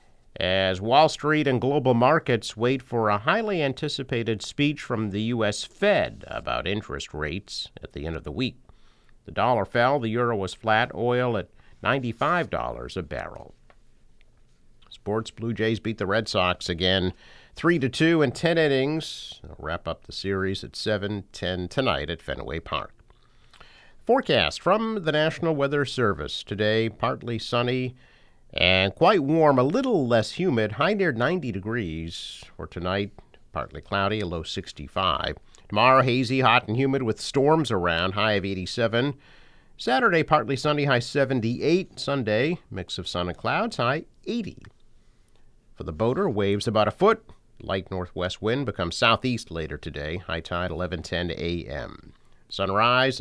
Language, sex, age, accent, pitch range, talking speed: English, male, 50-69, American, 95-135 Hz, 150 wpm